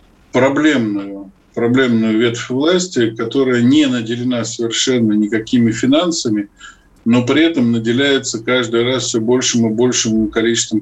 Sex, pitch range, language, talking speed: male, 110-135 Hz, Russian, 115 wpm